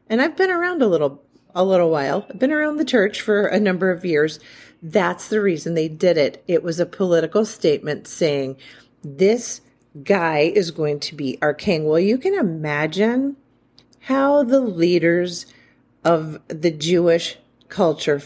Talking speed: 165 wpm